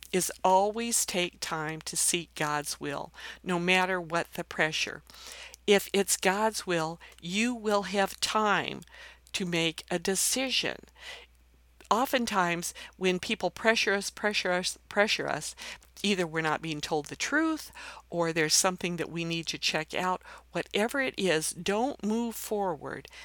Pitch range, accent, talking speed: 170-210 Hz, American, 145 wpm